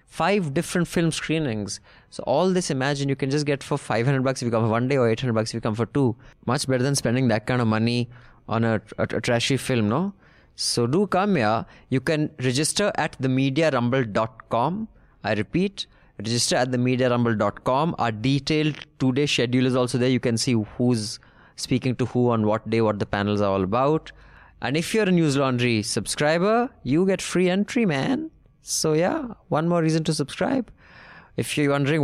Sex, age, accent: male, 20-39, Indian